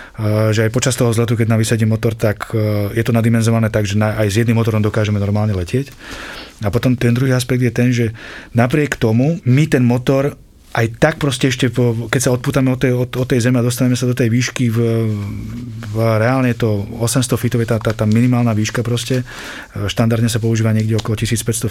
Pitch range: 110-130 Hz